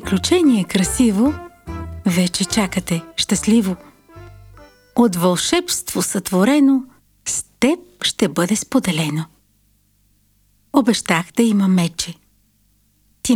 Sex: female